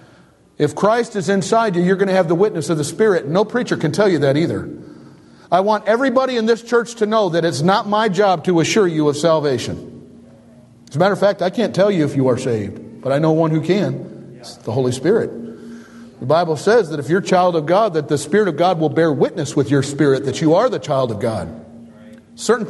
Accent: American